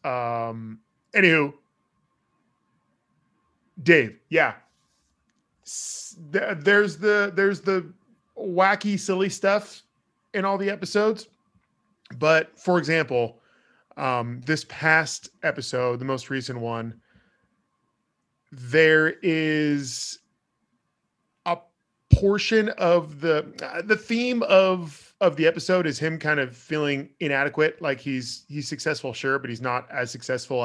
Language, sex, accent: English, male, American